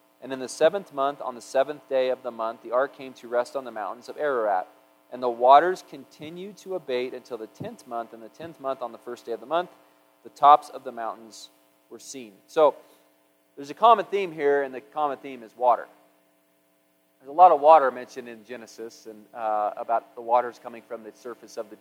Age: 40-59